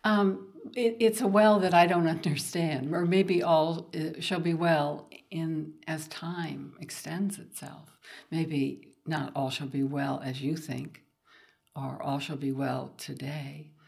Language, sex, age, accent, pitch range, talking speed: English, female, 60-79, American, 150-195 Hz, 145 wpm